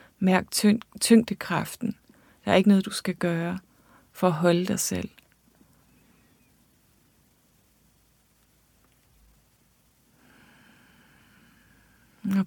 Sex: female